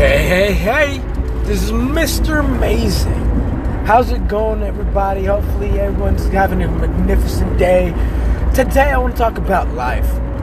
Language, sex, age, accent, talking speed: English, male, 20-39, American, 140 wpm